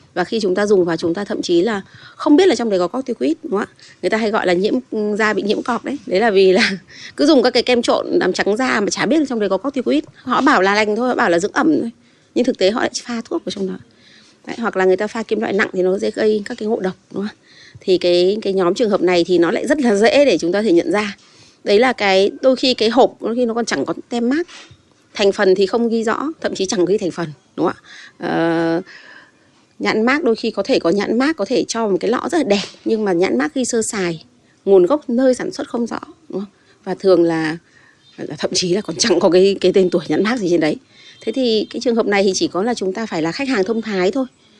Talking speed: 295 wpm